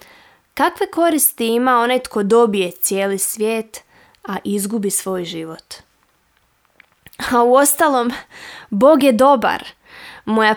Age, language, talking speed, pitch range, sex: 20-39, Croatian, 110 wpm, 200-245 Hz, female